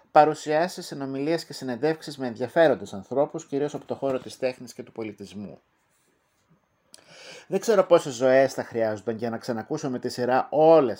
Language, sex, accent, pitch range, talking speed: Greek, male, native, 125-165 Hz, 160 wpm